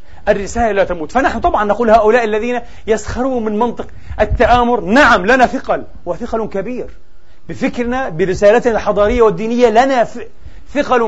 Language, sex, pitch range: Arabic, male, 210-265 Hz